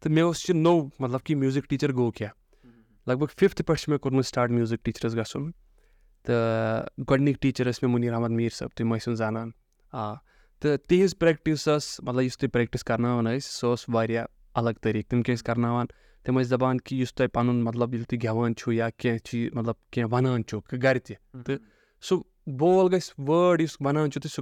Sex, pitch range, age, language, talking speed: male, 115-145 Hz, 20-39, Urdu, 145 wpm